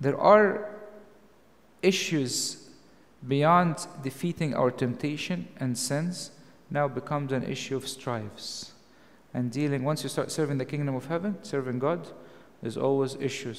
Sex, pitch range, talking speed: male, 125-165 Hz, 130 wpm